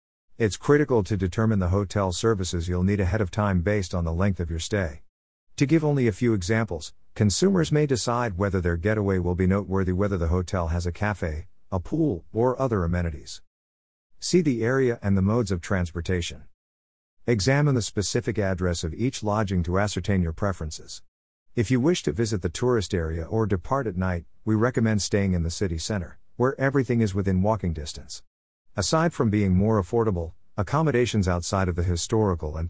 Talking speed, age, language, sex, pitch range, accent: 185 wpm, 50-69, English, male, 85-115 Hz, American